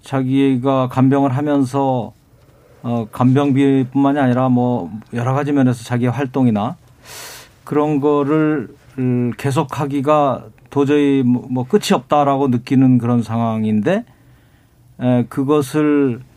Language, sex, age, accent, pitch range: Korean, male, 40-59, native, 125-150 Hz